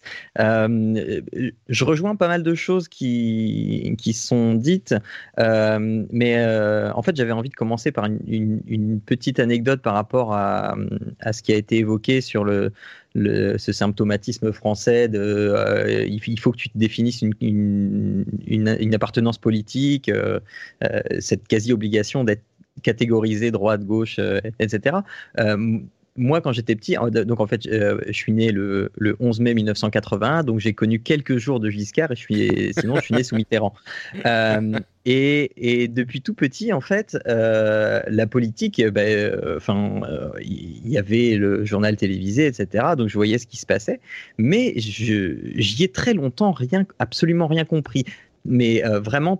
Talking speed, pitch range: 170 wpm, 110-130 Hz